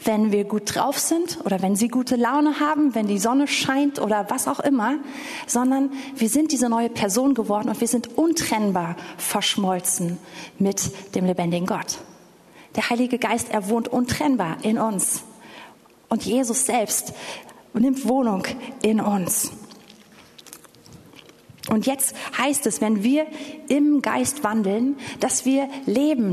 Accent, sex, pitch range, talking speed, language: German, female, 210-265 Hz, 140 wpm, German